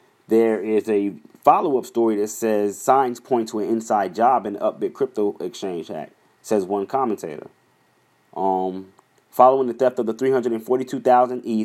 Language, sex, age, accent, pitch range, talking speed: English, male, 30-49, American, 110-125 Hz, 150 wpm